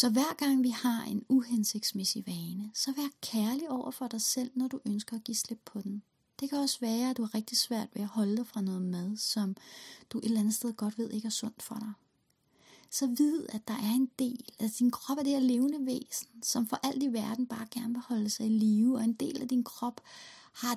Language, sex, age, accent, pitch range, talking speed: Danish, female, 30-49, native, 210-255 Hz, 250 wpm